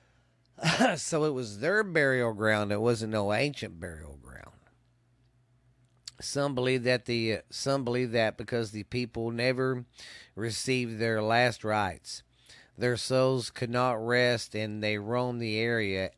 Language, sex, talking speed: English, male, 145 wpm